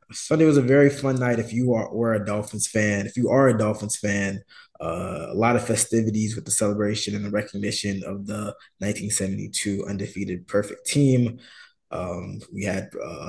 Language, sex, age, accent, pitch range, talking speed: English, male, 20-39, American, 100-120 Hz, 180 wpm